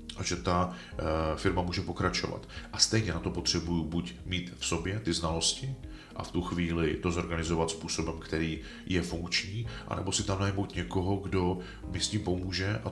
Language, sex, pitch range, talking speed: Czech, male, 85-100 Hz, 175 wpm